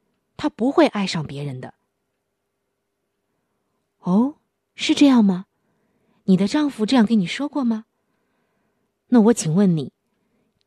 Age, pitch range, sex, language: 20-39, 170-230 Hz, female, Chinese